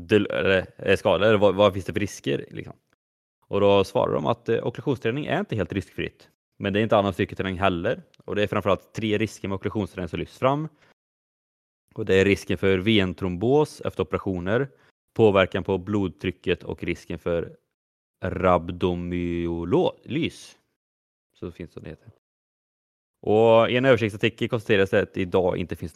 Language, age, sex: Swedish, 20-39, male